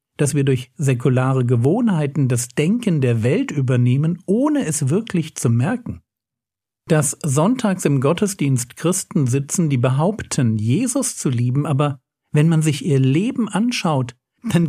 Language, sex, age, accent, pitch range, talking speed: German, male, 60-79, German, 130-170 Hz, 140 wpm